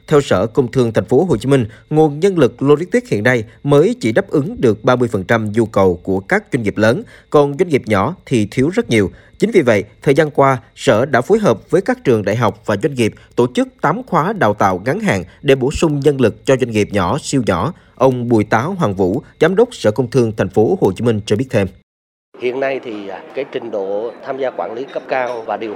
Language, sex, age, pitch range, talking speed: Vietnamese, male, 20-39, 110-150 Hz, 245 wpm